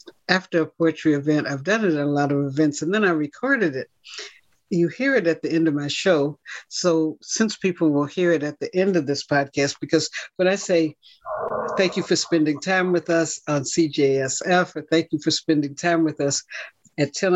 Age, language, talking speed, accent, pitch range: 60-79, English, 210 wpm, American, 150-195 Hz